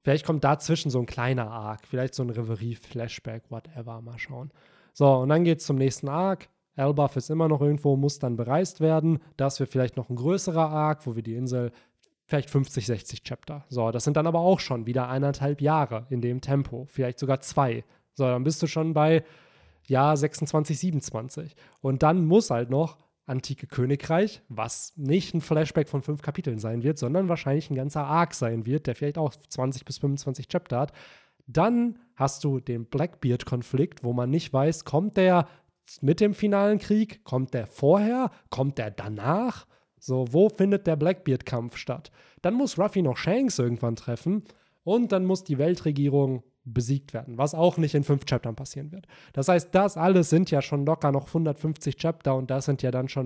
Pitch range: 125-160 Hz